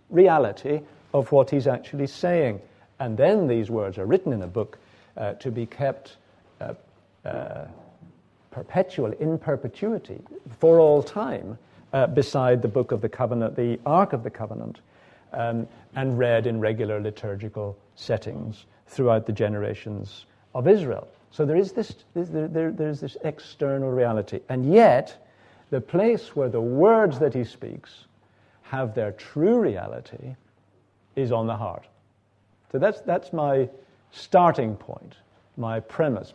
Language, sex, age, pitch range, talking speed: Danish, male, 50-69, 110-145 Hz, 140 wpm